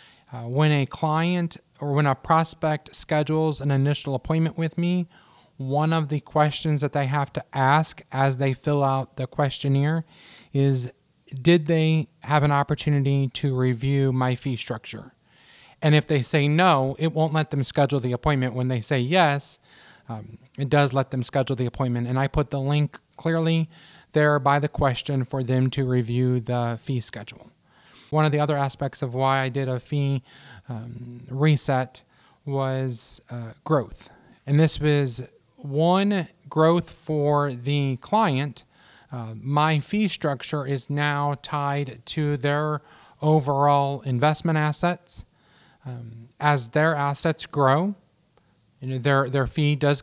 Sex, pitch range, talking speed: male, 130-155 Hz, 150 wpm